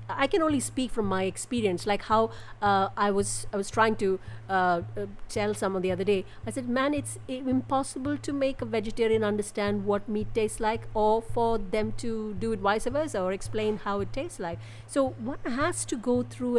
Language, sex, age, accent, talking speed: English, female, 50-69, Indian, 205 wpm